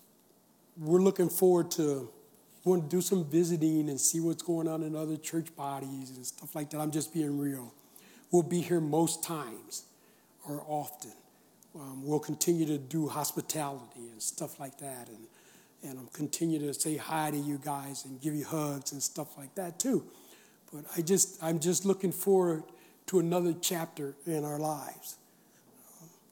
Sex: male